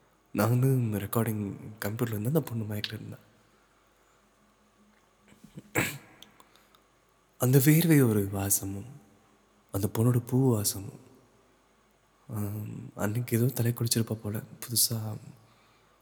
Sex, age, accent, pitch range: male, 20-39, native, 105-125 Hz